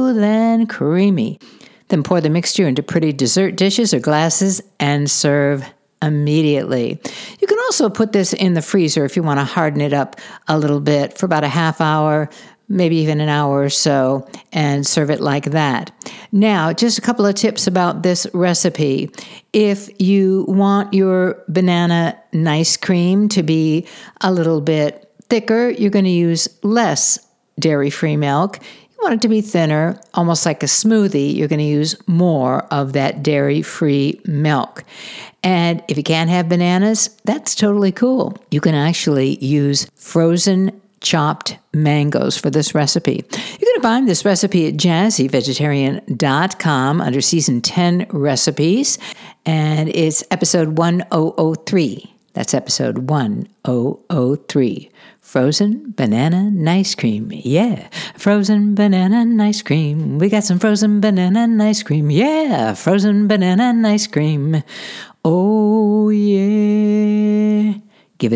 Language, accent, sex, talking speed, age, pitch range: English, American, female, 140 wpm, 60-79, 150-210 Hz